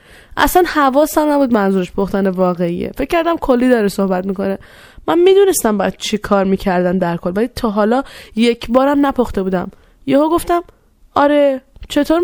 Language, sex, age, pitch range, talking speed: Persian, female, 10-29, 200-275 Hz, 145 wpm